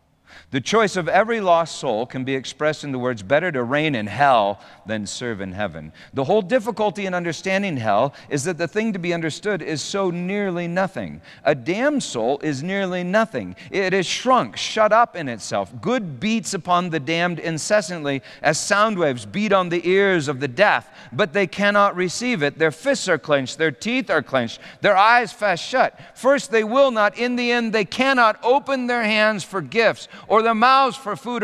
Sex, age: male, 40-59